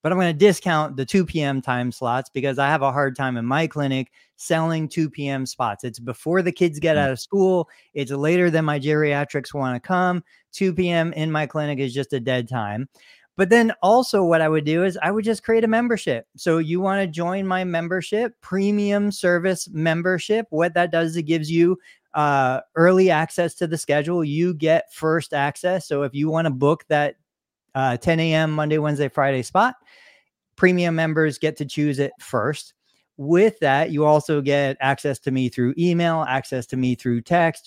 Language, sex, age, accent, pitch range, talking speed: English, male, 30-49, American, 140-170 Hz, 200 wpm